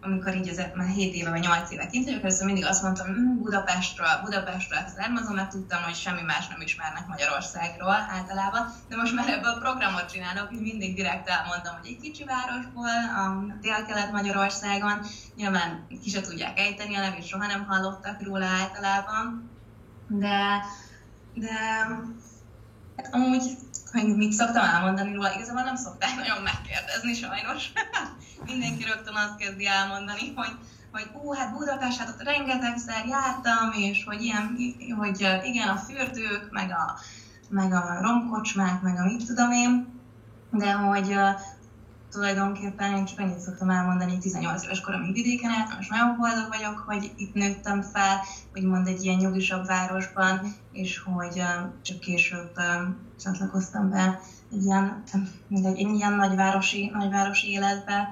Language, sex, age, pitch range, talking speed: Hungarian, female, 20-39, 185-220 Hz, 150 wpm